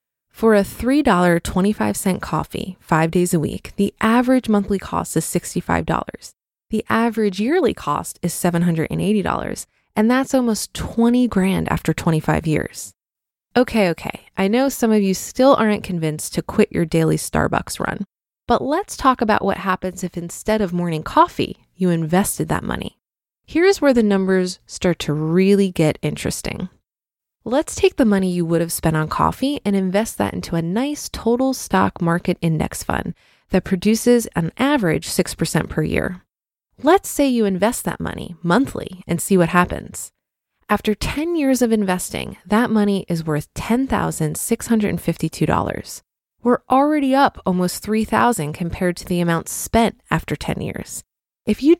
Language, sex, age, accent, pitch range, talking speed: English, female, 20-39, American, 175-235 Hz, 155 wpm